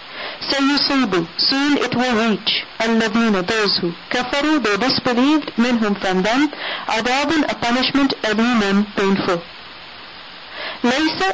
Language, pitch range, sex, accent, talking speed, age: English, 205-265 Hz, female, Indian, 115 wpm, 40-59